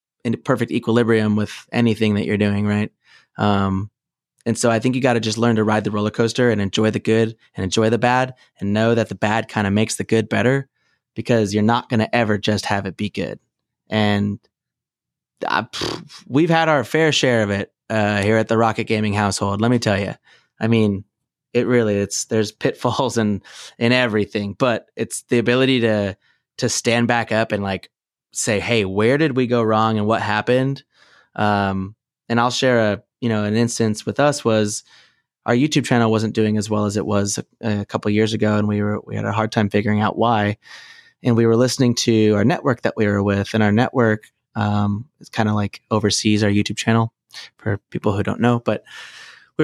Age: 20-39